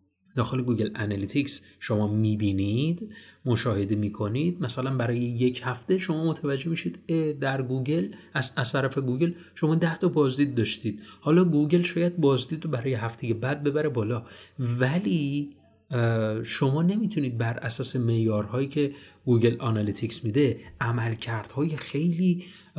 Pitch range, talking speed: 115-150 Hz, 125 wpm